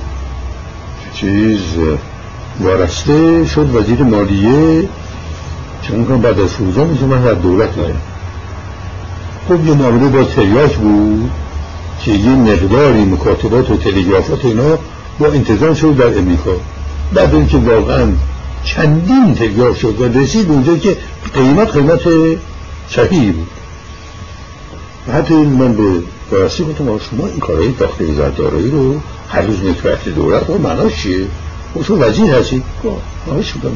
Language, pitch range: Persian, 85-140 Hz